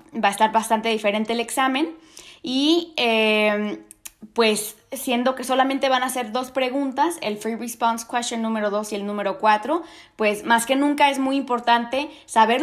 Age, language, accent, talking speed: 20-39, Spanish, Mexican, 170 wpm